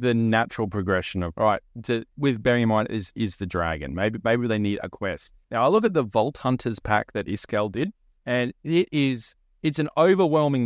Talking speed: 215 wpm